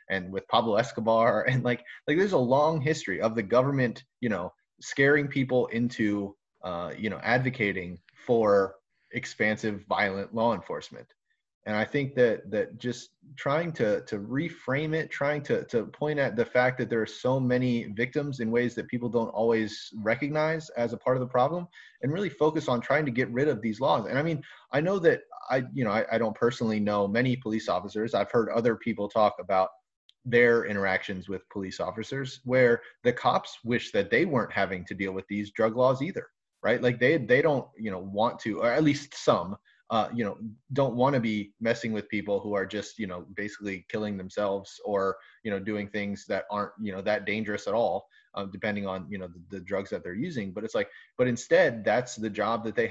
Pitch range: 100-125 Hz